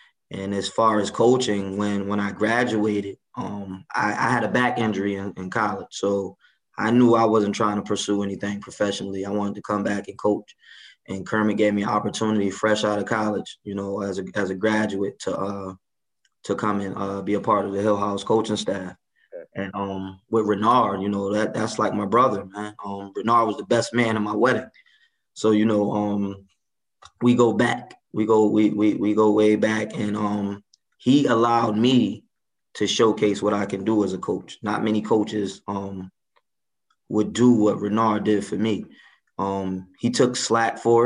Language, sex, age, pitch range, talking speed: English, male, 20-39, 100-110 Hz, 195 wpm